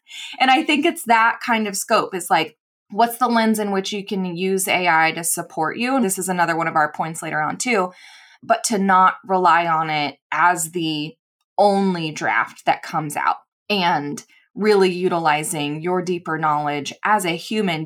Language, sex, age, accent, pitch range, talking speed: English, female, 20-39, American, 170-205 Hz, 185 wpm